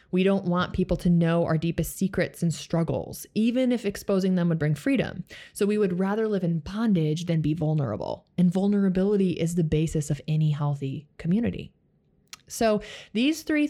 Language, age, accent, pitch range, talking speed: English, 20-39, American, 160-200 Hz, 175 wpm